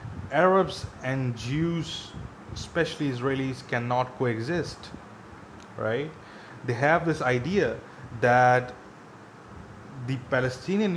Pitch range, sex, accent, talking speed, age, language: 115-145 Hz, male, Indian, 80 wpm, 20-39, English